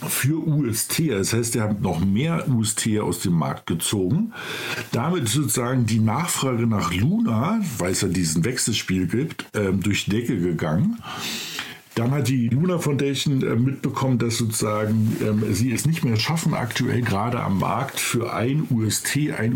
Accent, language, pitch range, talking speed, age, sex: German, German, 100-130 Hz, 155 wpm, 50-69, male